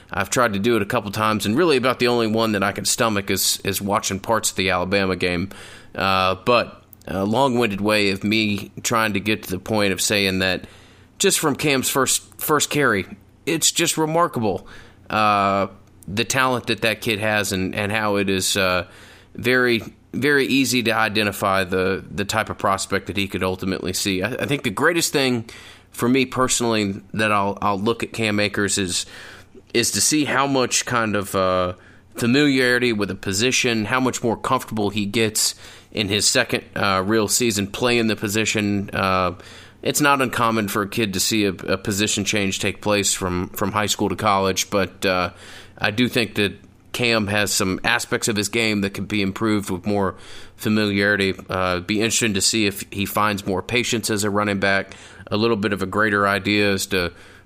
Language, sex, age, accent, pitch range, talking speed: English, male, 30-49, American, 95-115 Hz, 200 wpm